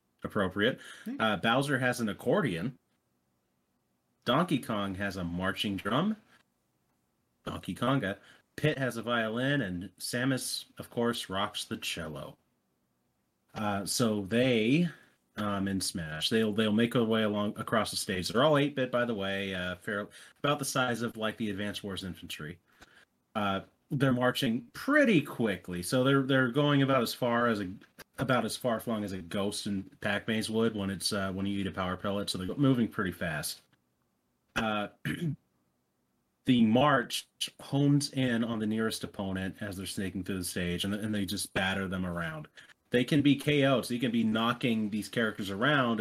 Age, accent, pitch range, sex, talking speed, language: 30-49, American, 95-120 Hz, male, 165 wpm, English